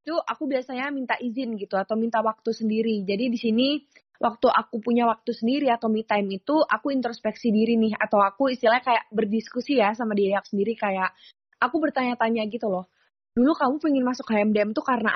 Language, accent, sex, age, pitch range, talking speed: Indonesian, native, female, 20-39, 215-255 Hz, 190 wpm